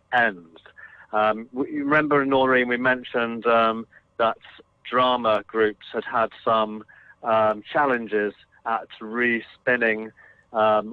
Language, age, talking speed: English, 40-59, 105 wpm